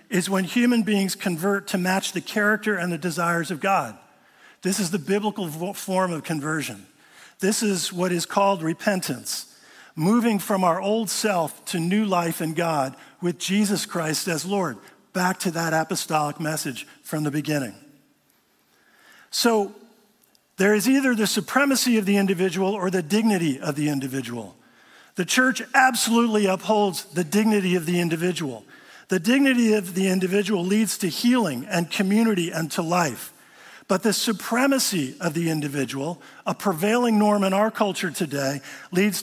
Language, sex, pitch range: English, male, 155-205 Hz